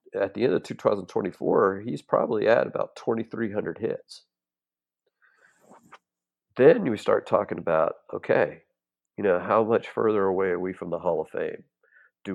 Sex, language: male, English